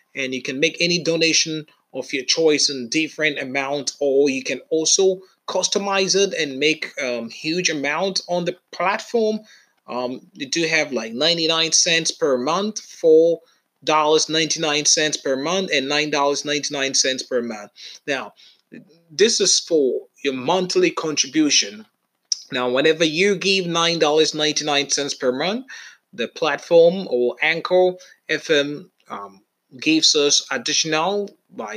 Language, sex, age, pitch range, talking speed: Finnish, male, 30-49, 140-195 Hz, 140 wpm